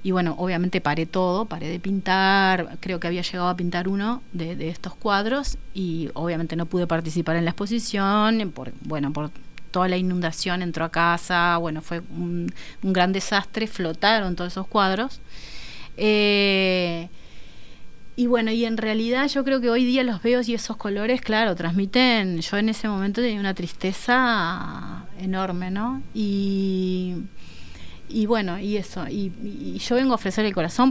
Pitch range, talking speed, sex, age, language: 175-220 Hz, 165 wpm, female, 30-49, Spanish